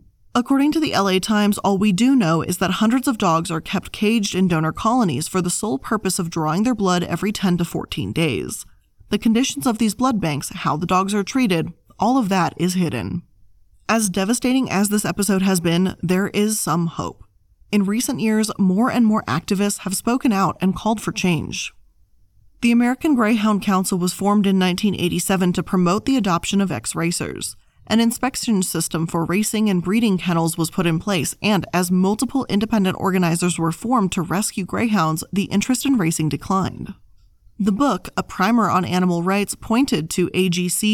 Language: English